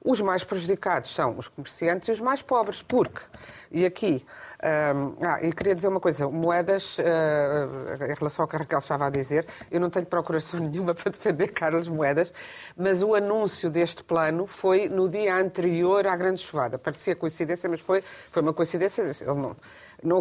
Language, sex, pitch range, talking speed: Portuguese, female, 170-220 Hz, 185 wpm